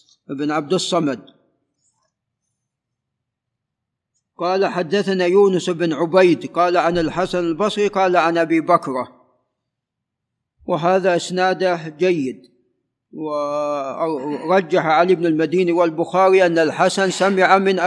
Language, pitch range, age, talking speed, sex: Arabic, 170-200 Hz, 50-69, 95 wpm, male